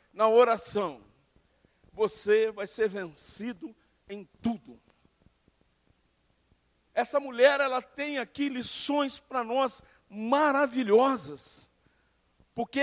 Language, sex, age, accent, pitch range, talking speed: Portuguese, male, 50-69, Brazilian, 205-275 Hz, 85 wpm